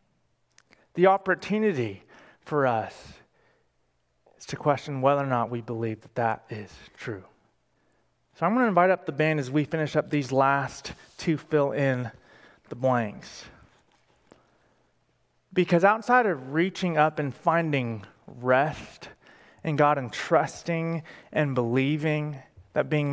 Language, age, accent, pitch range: English, 30-49, American, 140-180 Hz